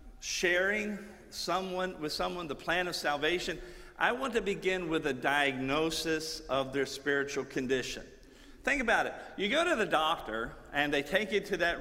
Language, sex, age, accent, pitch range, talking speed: English, male, 50-69, American, 140-185 Hz, 170 wpm